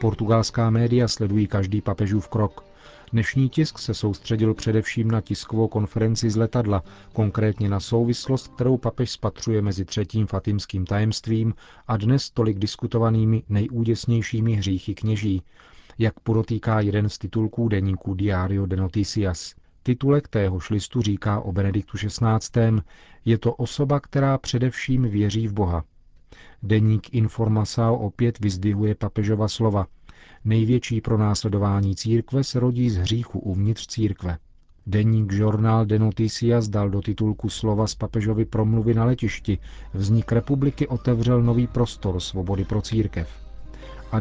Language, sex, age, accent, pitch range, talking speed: Czech, male, 40-59, native, 100-115 Hz, 130 wpm